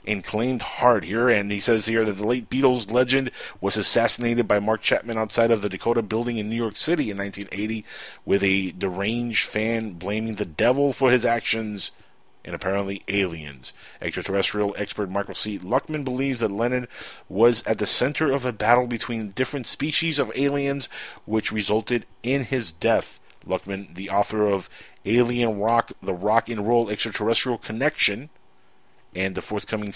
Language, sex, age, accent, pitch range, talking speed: English, male, 30-49, American, 105-130 Hz, 160 wpm